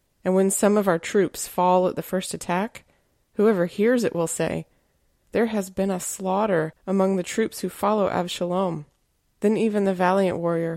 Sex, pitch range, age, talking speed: female, 170-200 Hz, 30-49, 180 wpm